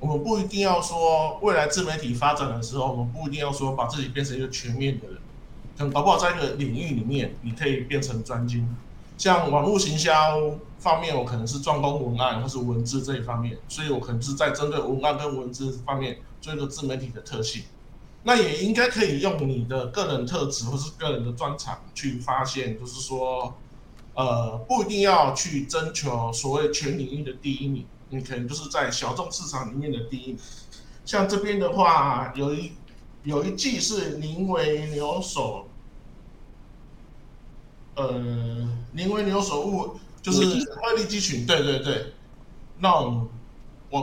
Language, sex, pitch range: Chinese, male, 125-160 Hz